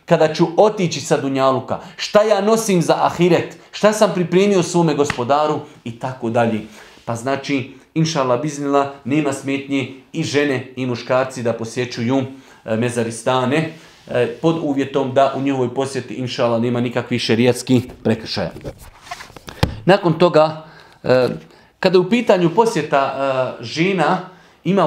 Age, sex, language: 40-59, male, English